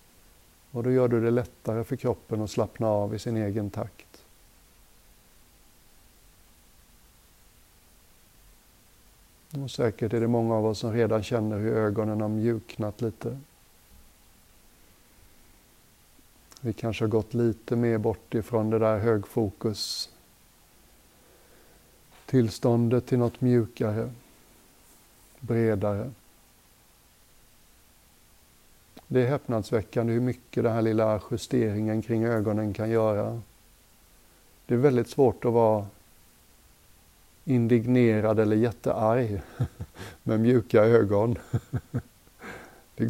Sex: male